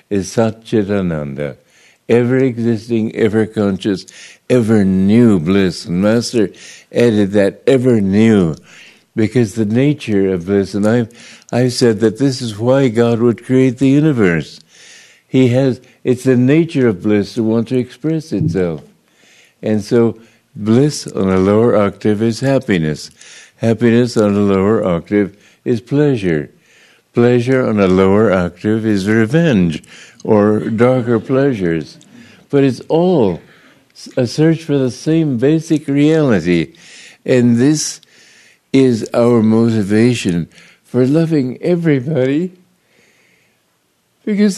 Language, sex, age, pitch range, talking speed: English, male, 60-79, 100-130 Hz, 115 wpm